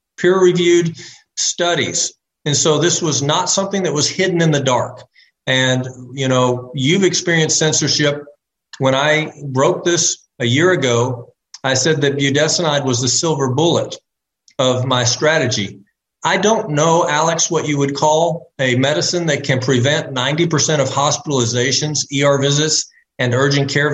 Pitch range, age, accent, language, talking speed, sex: 130-160 Hz, 50-69, American, English, 150 wpm, male